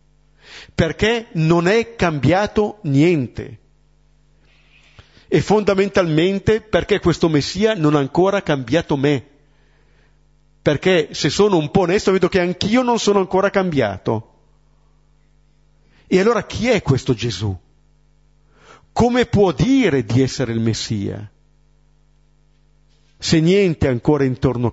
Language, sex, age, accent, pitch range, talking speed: Italian, male, 50-69, native, 140-185 Hz, 110 wpm